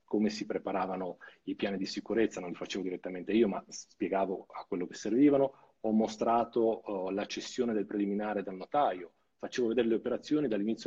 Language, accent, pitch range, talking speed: Italian, native, 100-140 Hz, 175 wpm